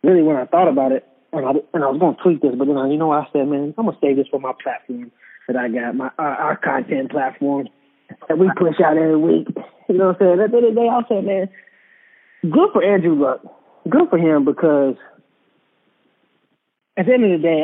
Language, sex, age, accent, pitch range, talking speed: English, male, 20-39, American, 135-180 Hz, 240 wpm